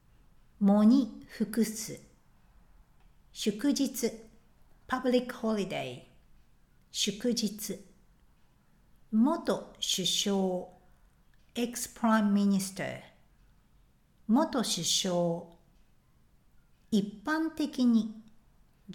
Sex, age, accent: female, 60-79, native